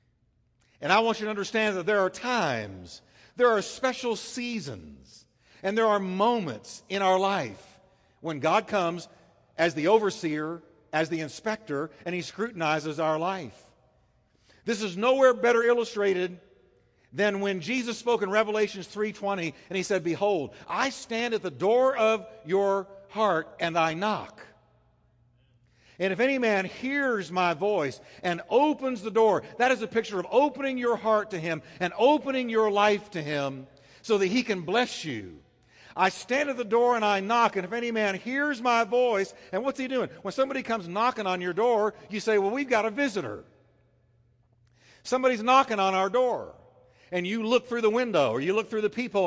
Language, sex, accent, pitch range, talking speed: English, male, American, 165-235 Hz, 175 wpm